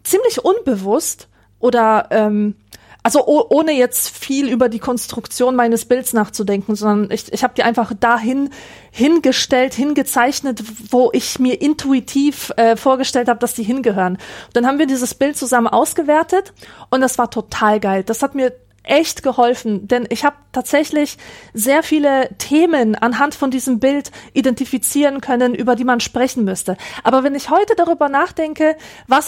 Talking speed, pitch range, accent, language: 160 wpm, 230-290 Hz, German, German